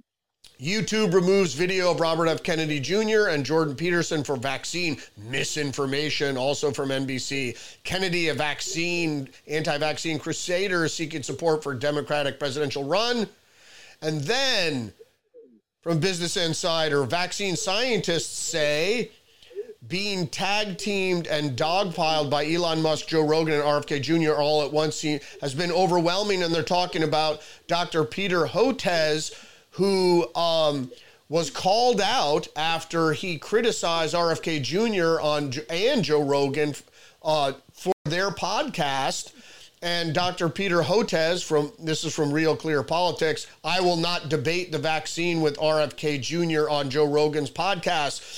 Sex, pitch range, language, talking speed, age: male, 150-180 Hz, English, 130 wpm, 40-59